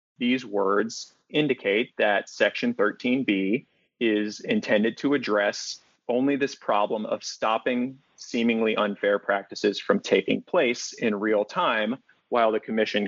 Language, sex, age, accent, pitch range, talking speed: English, male, 30-49, American, 105-145 Hz, 125 wpm